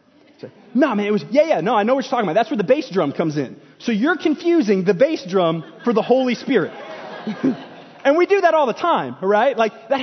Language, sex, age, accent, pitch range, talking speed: English, male, 20-39, American, 170-270 Hz, 240 wpm